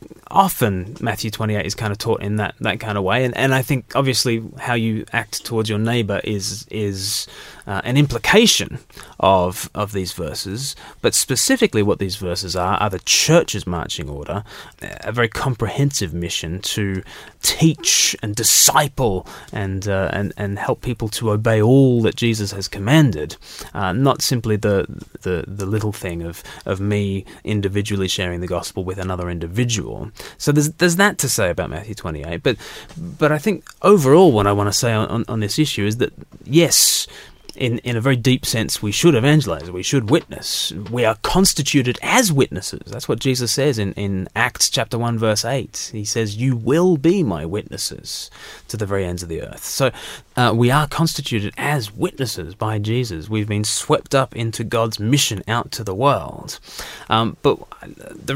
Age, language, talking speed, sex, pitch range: 20-39, English, 180 wpm, male, 100-135 Hz